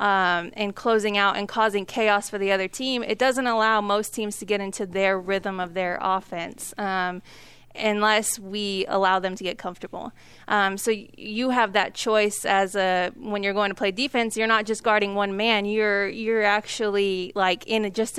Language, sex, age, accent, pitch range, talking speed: English, female, 20-39, American, 195-220 Hz, 190 wpm